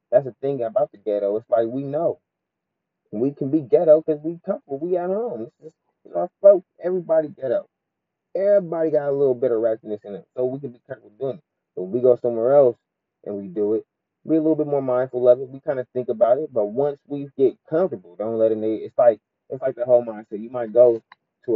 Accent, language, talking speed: American, English, 240 wpm